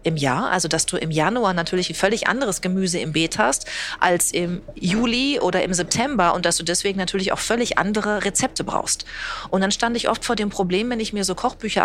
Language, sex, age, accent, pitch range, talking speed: German, female, 40-59, German, 175-220 Hz, 225 wpm